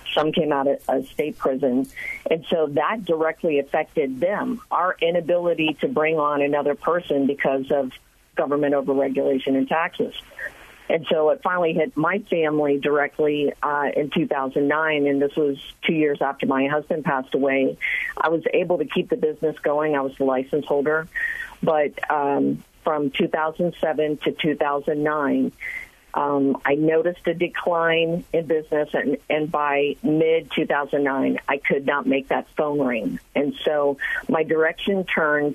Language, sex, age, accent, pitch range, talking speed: English, female, 50-69, American, 145-165 Hz, 150 wpm